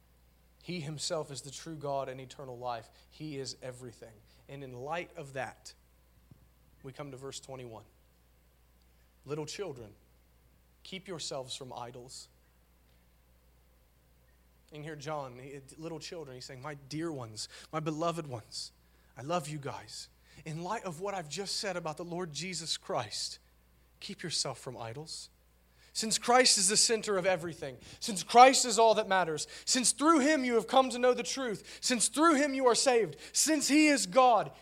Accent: American